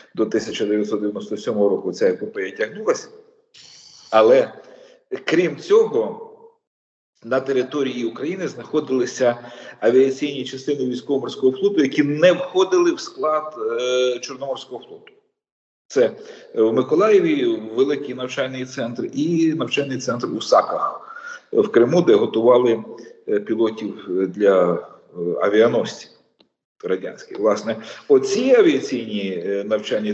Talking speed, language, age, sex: 100 wpm, Ukrainian, 40-59, male